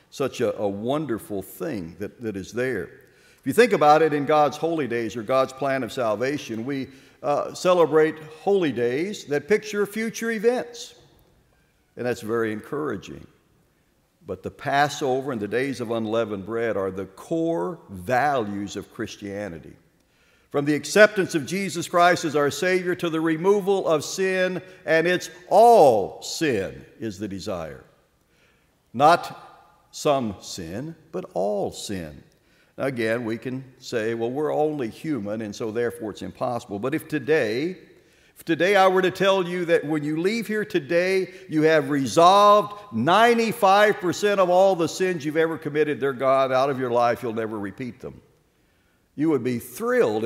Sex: male